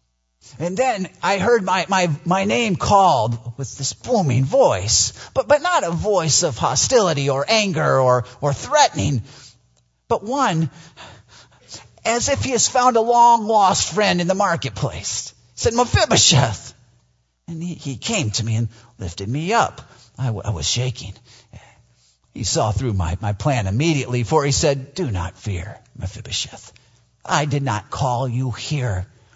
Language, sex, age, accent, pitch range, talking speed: English, male, 40-59, American, 105-155 Hz, 155 wpm